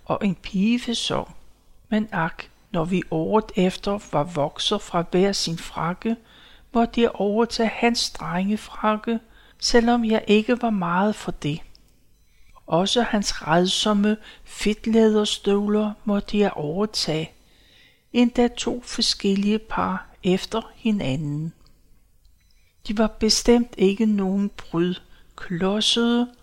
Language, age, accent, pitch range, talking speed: Danish, 60-79, native, 180-230 Hz, 110 wpm